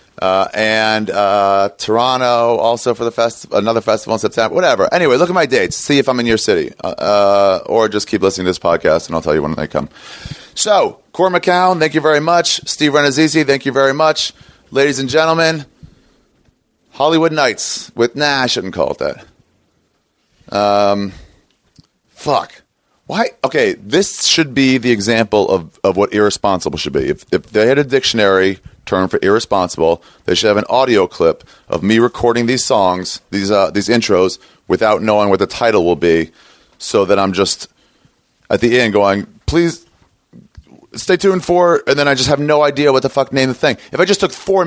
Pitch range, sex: 100-145 Hz, male